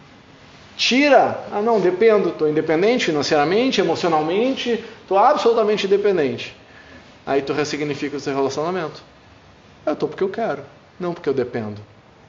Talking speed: 125 wpm